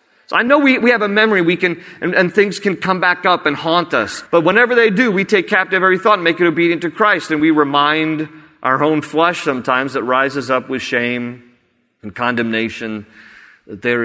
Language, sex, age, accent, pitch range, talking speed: English, male, 40-59, American, 100-135 Hz, 220 wpm